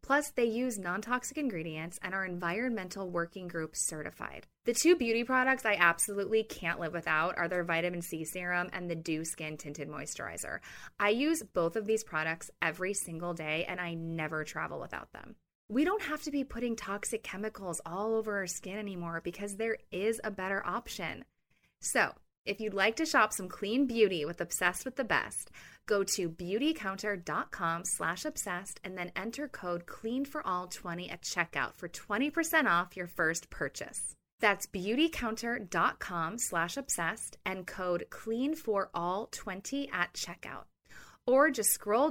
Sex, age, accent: female, 20-39, American